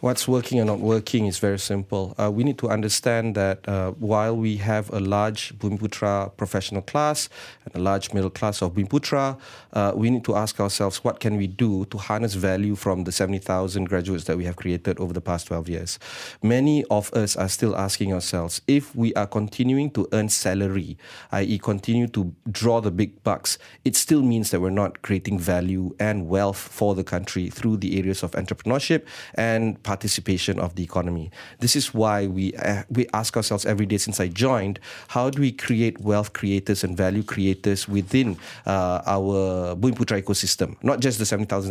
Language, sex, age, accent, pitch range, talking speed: English, male, 30-49, Malaysian, 95-115 Hz, 190 wpm